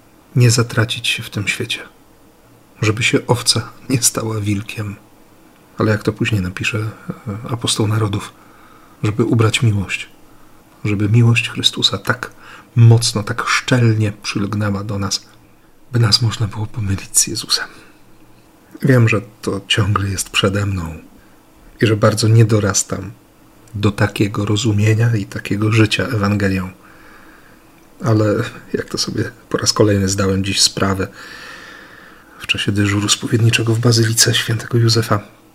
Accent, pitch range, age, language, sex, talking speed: native, 105-115 Hz, 40-59, Polish, male, 130 wpm